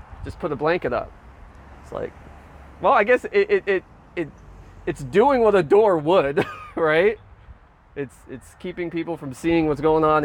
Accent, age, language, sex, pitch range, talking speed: American, 20-39, English, male, 135-180 Hz, 175 wpm